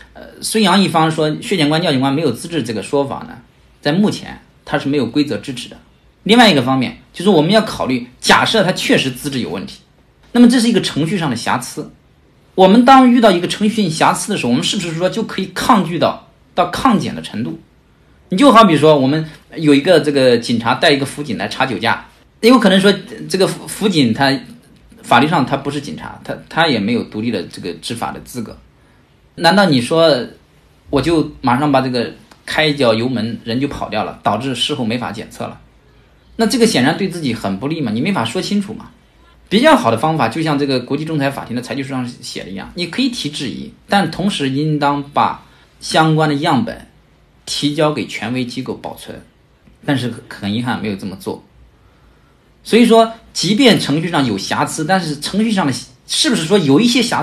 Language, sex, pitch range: Chinese, male, 140-205 Hz